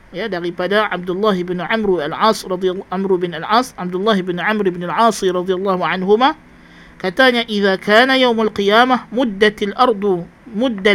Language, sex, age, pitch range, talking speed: Malay, male, 50-69, 195-245 Hz, 140 wpm